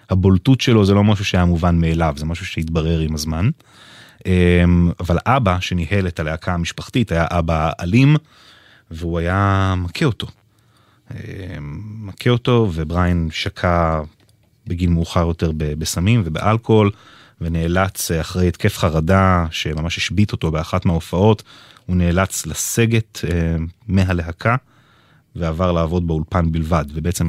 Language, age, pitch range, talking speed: English, 30-49, 85-105 Hz, 105 wpm